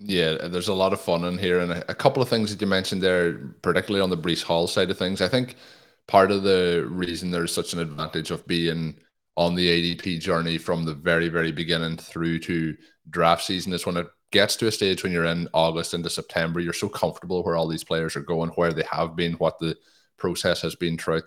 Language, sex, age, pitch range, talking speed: English, male, 20-39, 80-90 Hz, 230 wpm